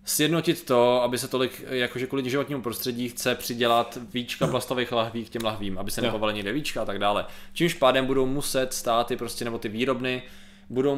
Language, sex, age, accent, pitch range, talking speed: Czech, male, 20-39, native, 115-150 Hz, 190 wpm